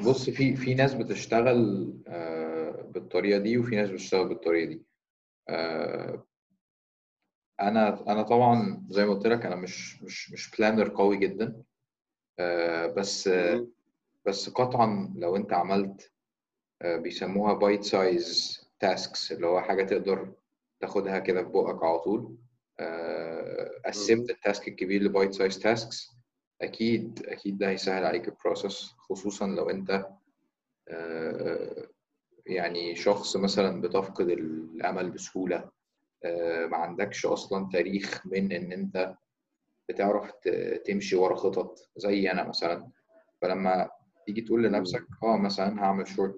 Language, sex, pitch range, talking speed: Arabic, male, 95-120 Hz, 115 wpm